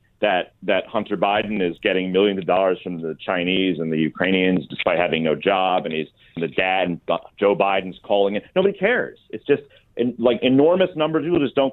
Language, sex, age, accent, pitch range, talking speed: English, male, 40-59, American, 100-160 Hz, 205 wpm